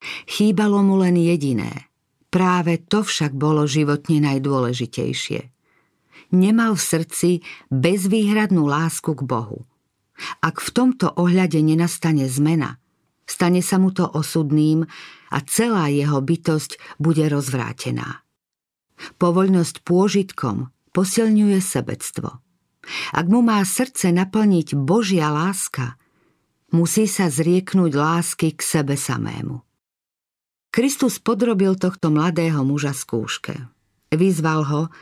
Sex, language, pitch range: female, Slovak, 150-190 Hz